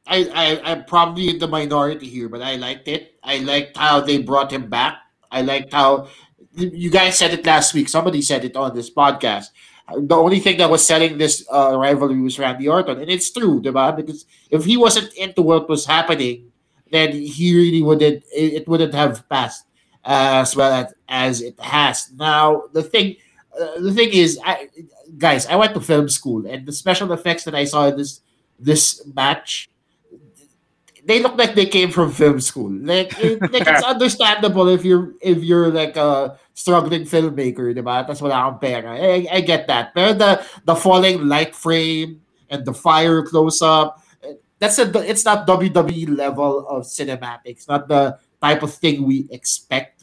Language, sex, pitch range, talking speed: English, male, 140-170 Hz, 180 wpm